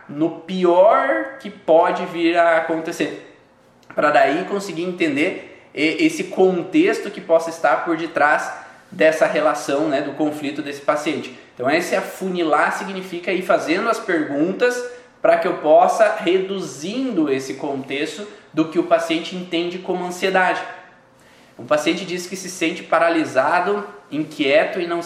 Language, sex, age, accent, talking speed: Portuguese, male, 20-39, Brazilian, 140 wpm